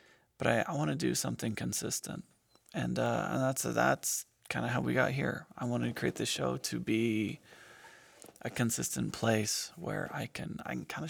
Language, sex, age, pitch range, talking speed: English, male, 20-39, 110-125 Hz, 200 wpm